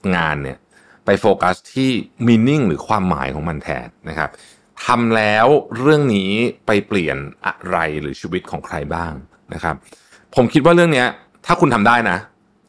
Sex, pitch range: male, 85-130 Hz